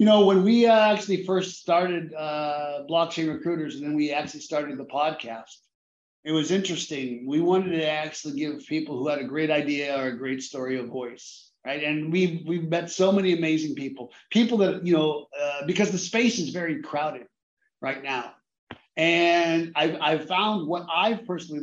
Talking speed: 185 wpm